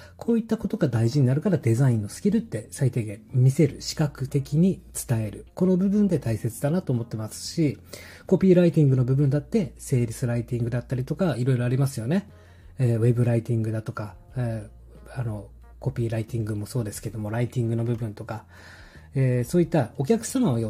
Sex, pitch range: male, 115-155 Hz